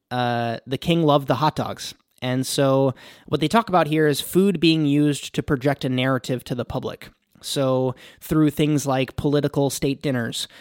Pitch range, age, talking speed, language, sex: 125-150 Hz, 20-39, 180 wpm, English, male